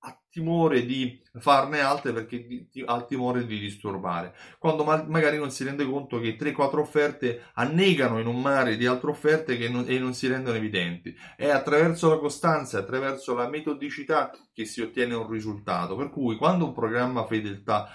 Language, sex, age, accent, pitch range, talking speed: Italian, male, 30-49, native, 115-145 Hz, 175 wpm